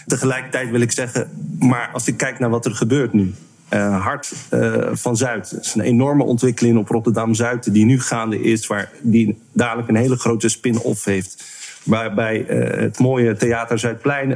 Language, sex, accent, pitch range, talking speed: Dutch, male, Dutch, 115-130 Hz, 180 wpm